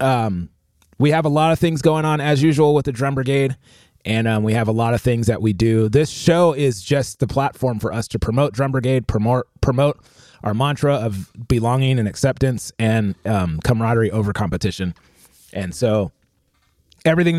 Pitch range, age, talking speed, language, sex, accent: 95-130 Hz, 30-49, 185 wpm, English, male, American